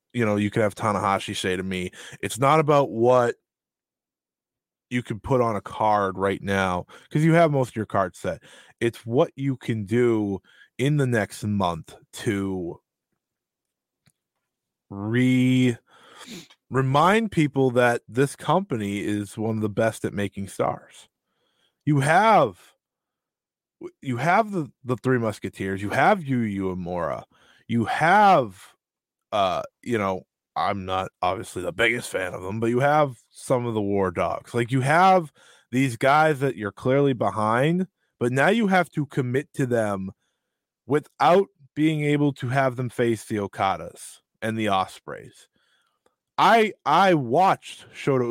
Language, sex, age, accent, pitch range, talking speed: English, male, 20-39, American, 105-150 Hz, 150 wpm